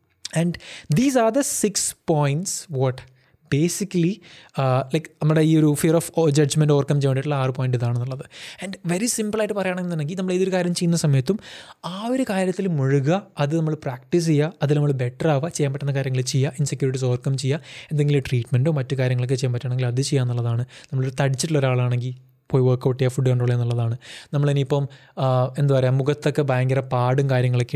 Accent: native